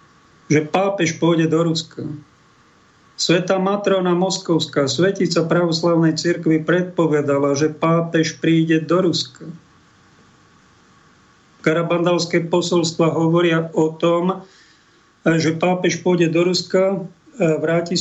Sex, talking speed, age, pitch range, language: male, 95 wpm, 40-59, 155-175 Hz, Slovak